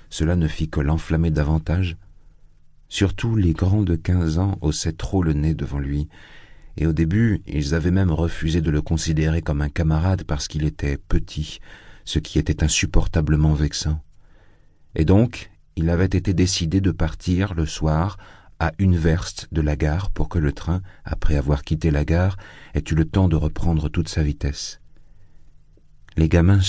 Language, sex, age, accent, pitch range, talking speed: French, male, 40-59, French, 75-95 Hz, 170 wpm